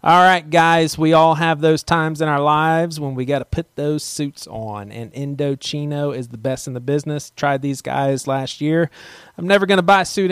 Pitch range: 120-155 Hz